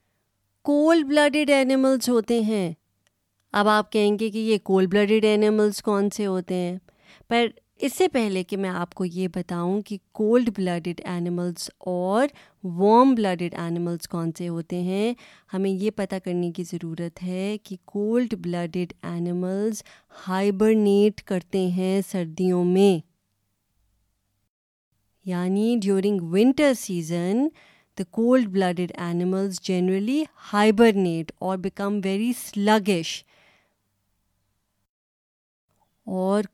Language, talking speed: Urdu, 110 wpm